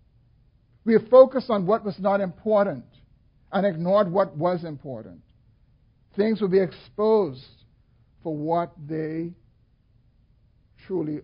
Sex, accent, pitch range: male, American, 135-205 Hz